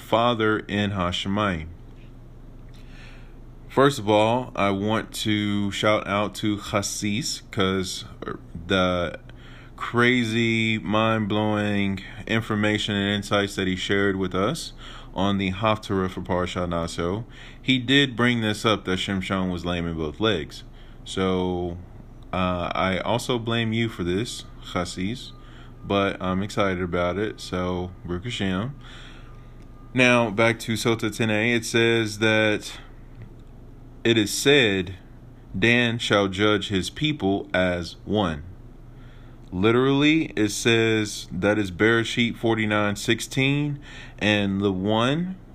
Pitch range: 95-120 Hz